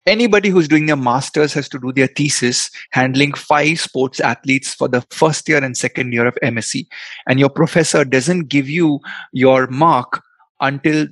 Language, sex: Hindi, male